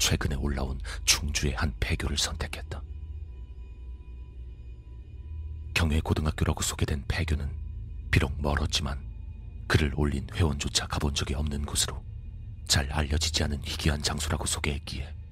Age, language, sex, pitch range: 40-59, Korean, male, 75-85 Hz